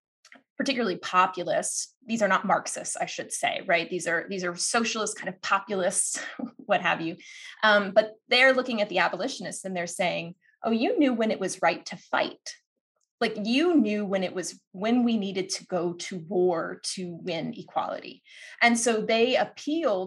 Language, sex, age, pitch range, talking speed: English, female, 20-39, 180-230 Hz, 180 wpm